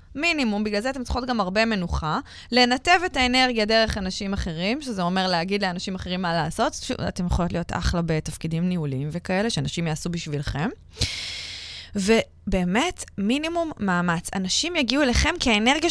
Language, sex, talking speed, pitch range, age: Hebrew, female, 145 wpm, 170-240 Hz, 20-39